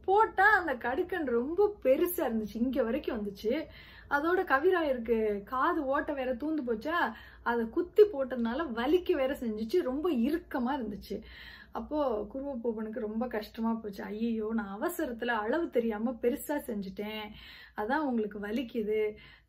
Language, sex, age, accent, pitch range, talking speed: Tamil, female, 30-49, native, 220-285 Hz, 125 wpm